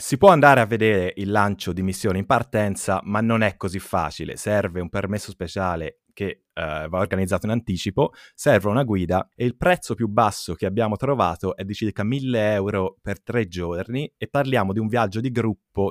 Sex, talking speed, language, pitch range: male, 190 wpm, Italian, 95-115 Hz